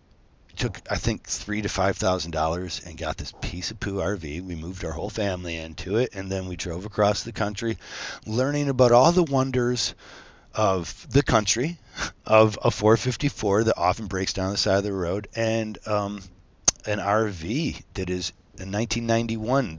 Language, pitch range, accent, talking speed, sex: English, 90-115 Hz, American, 165 wpm, male